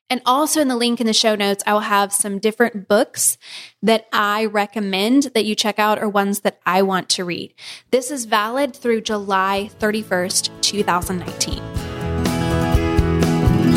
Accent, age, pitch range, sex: American, 10-29, 195-240 Hz, female